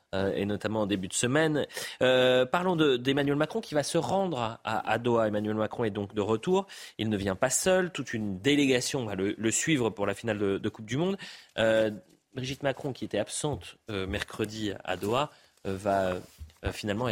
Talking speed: 205 wpm